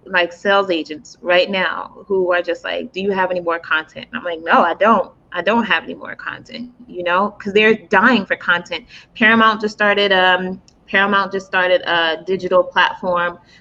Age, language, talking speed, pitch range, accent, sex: 20-39, English, 195 wpm, 175-210 Hz, American, female